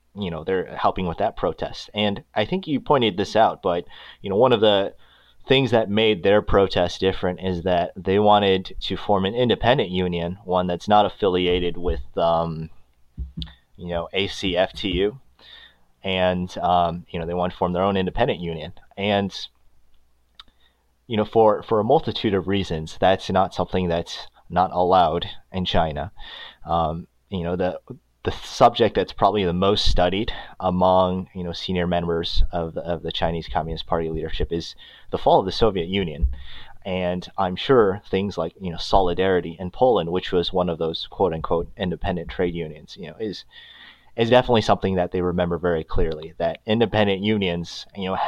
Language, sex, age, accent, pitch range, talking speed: English, male, 30-49, American, 85-100 Hz, 175 wpm